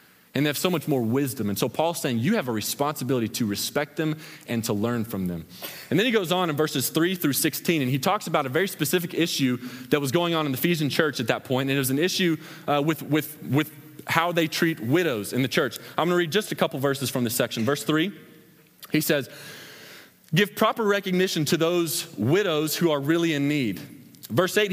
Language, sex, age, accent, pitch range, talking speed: English, male, 30-49, American, 140-190 Hz, 230 wpm